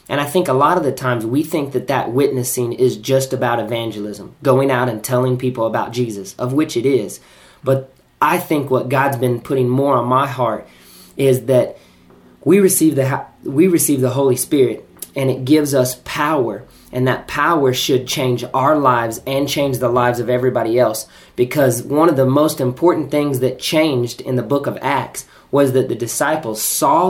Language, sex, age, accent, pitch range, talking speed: English, male, 20-39, American, 120-140 Hz, 190 wpm